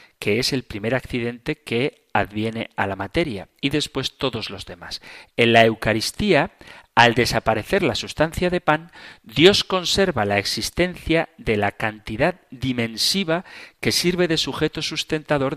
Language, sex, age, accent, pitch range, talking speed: Spanish, male, 40-59, Spanish, 110-155 Hz, 145 wpm